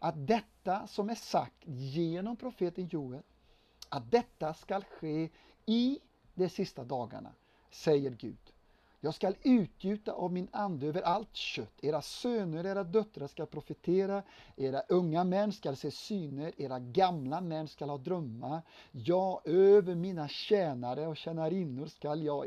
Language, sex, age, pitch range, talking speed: Swedish, male, 50-69, 155-200 Hz, 140 wpm